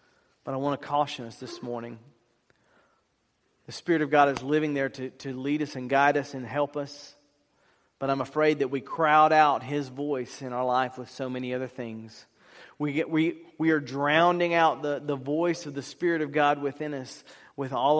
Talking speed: 205 wpm